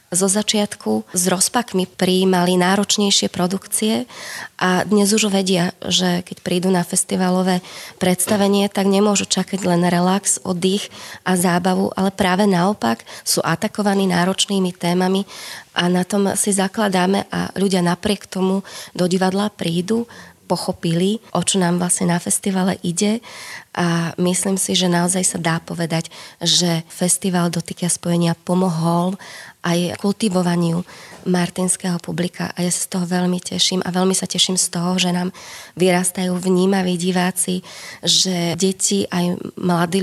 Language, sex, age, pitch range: Slovak, female, 20-39, 175-195 Hz